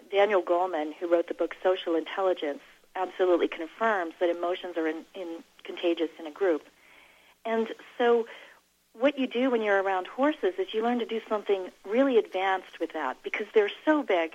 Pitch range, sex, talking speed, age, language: 175-240 Hz, female, 175 wpm, 40-59, English